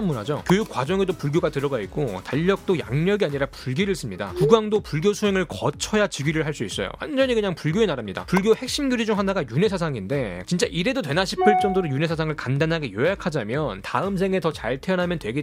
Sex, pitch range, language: male, 155-225 Hz, Korean